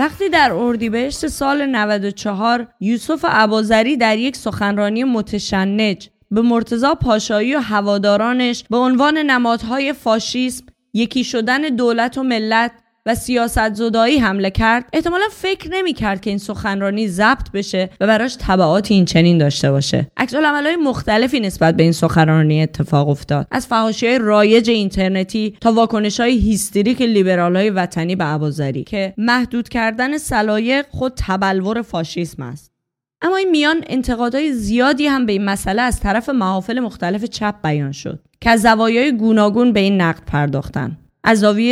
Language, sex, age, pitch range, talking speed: Persian, female, 20-39, 190-245 Hz, 140 wpm